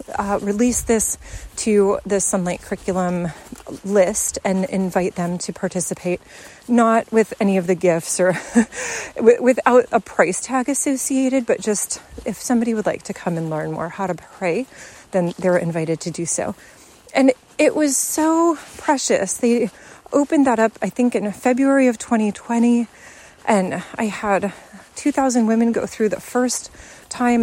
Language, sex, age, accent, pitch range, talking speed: English, female, 30-49, American, 200-255 Hz, 155 wpm